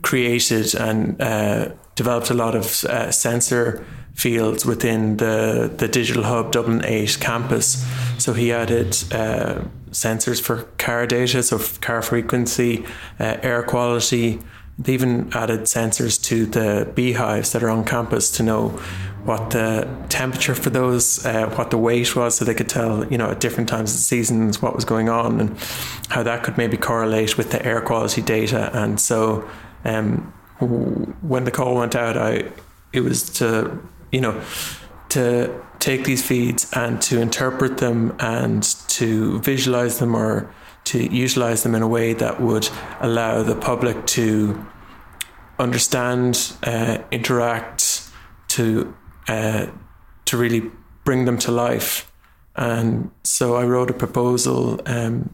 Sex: male